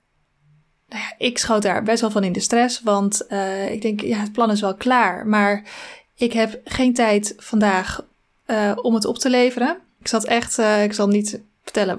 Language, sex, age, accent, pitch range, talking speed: Dutch, female, 20-39, Dutch, 210-245 Hz, 205 wpm